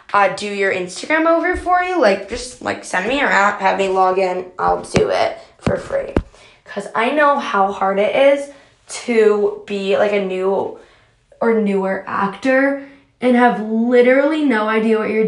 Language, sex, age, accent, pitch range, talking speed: English, female, 10-29, American, 200-250 Hz, 175 wpm